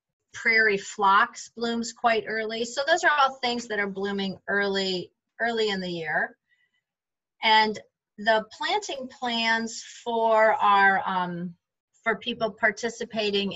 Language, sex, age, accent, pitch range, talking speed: English, female, 40-59, American, 180-230 Hz, 125 wpm